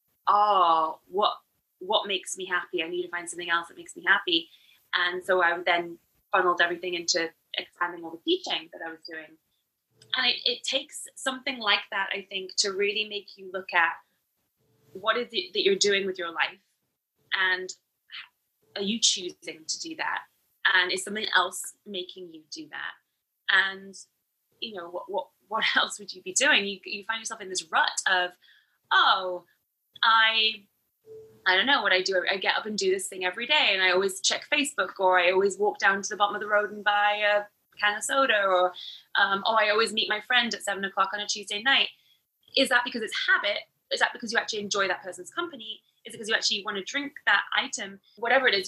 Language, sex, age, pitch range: English, female, 20-39, 180-235 Hz